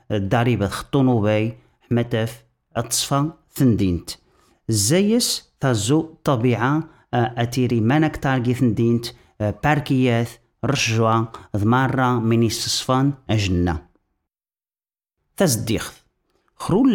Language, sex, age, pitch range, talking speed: Dutch, male, 40-59, 110-150 Hz, 75 wpm